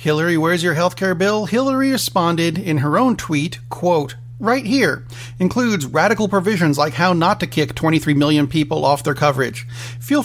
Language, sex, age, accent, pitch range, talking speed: English, male, 40-59, American, 125-190 Hz, 170 wpm